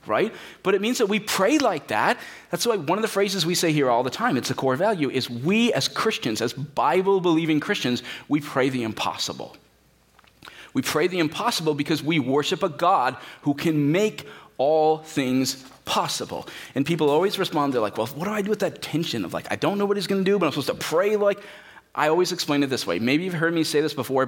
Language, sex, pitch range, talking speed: English, male, 130-180 Hz, 230 wpm